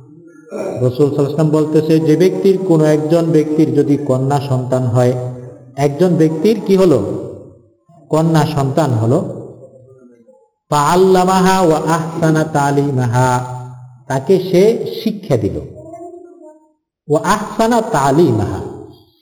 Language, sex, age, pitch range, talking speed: Bengali, male, 50-69, 130-185 Hz, 80 wpm